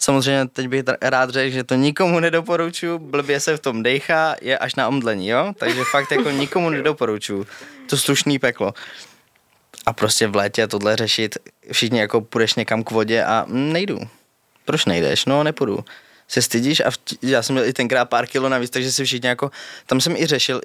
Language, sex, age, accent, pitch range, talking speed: Czech, male, 20-39, native, 115-145 Hz, 190 wpm